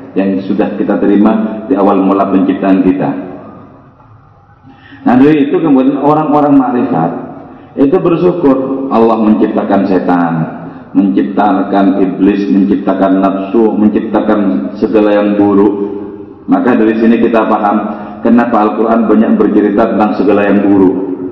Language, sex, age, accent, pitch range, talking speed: Indonesian, male, 40-59, native, 105-135 Hz, 115 wpm